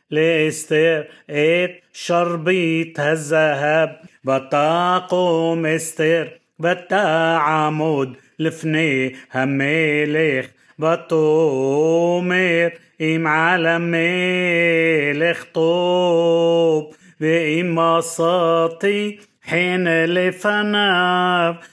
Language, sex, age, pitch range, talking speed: Hebrew, male, 30-49, 155-180 Hz, 50 wpm